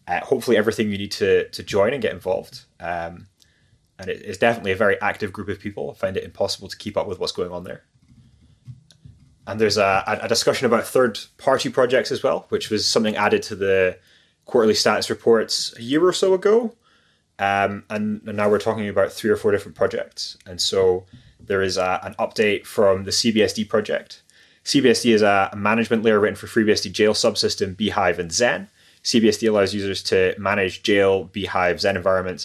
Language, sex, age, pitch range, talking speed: English, male, 20-39, 95-115 Hz, 190 wpm